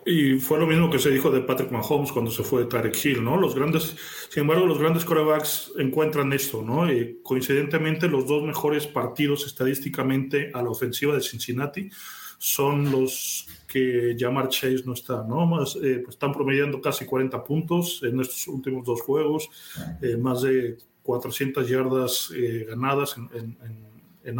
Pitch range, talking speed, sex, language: 120-150 Hz, 170 wpm, male, English